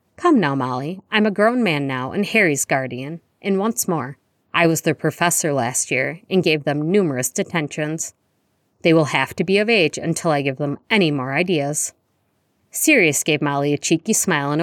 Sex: female